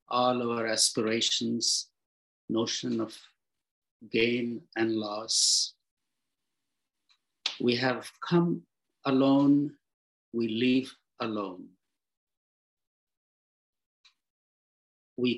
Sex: male